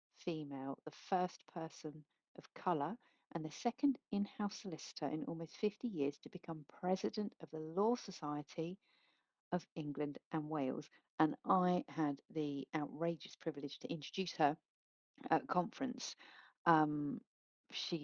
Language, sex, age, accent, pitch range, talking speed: English, female, 50-69, British, 150-200 Hz, 130 wpm